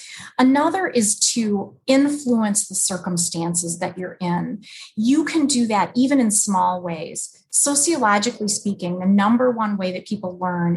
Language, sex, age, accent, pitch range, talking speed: English, female, 30-49, American, 190-250 Hz, 145 wpm